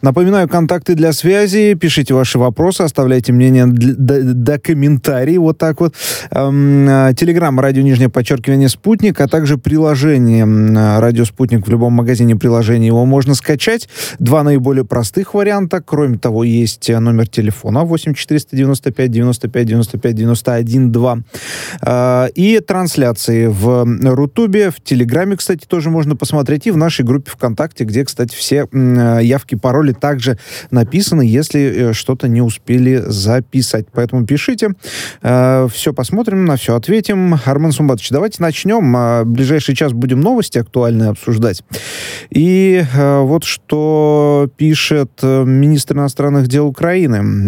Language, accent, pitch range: Russian, native, 120-155 Hz